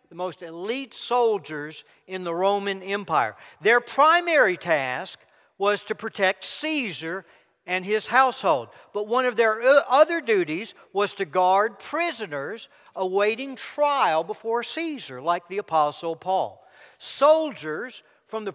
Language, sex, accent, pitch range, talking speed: English, male, American, 195-285 Hz, 125 wpm